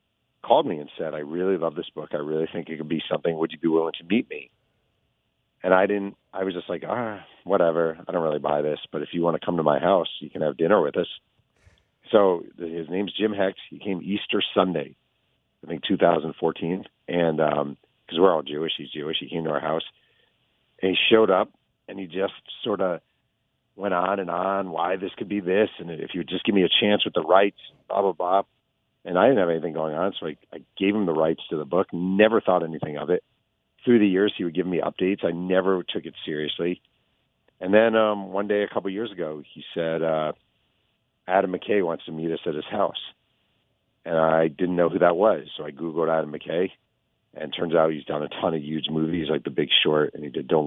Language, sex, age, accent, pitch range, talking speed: English, male, 40-59, American, 80-95 Hz, 235 wpm